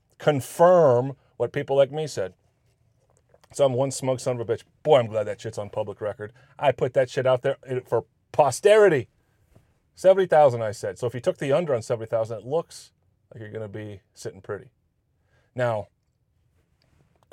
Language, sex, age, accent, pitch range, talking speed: English, male, 30-49, American, 105-130 Hz, 175 wpm